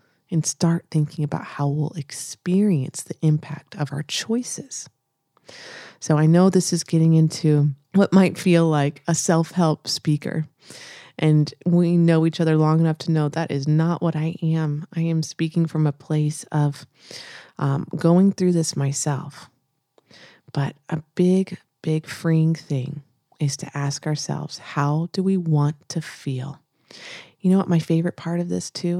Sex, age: female, 30-49